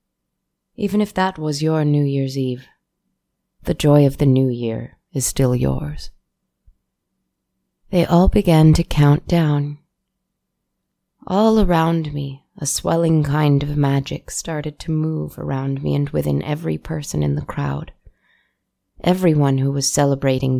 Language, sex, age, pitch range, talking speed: English, female, 20-39, 140-170 Hz, 135 wpm